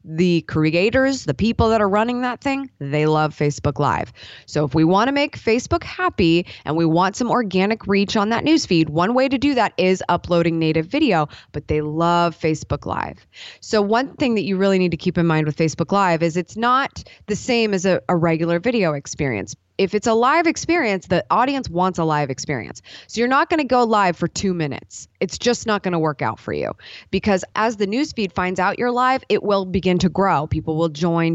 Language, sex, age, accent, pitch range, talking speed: English, female, 20-39, American, 160-215 Hz, 220 wpm